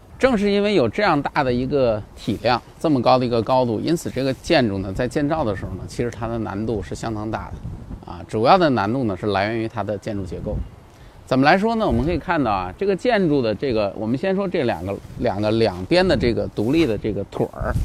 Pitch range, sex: 110-180 Hz, male